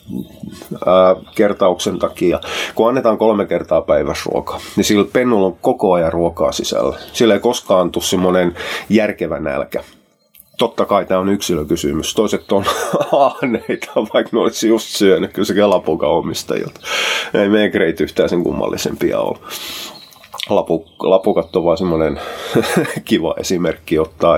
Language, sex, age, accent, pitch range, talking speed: Finnish, male, 30-49, native, 90-115 Hz, 125 wpm